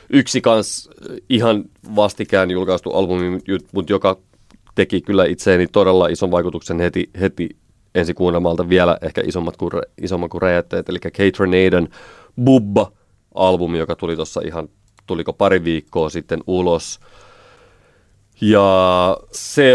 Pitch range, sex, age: 90-110 Hz, male, 30-49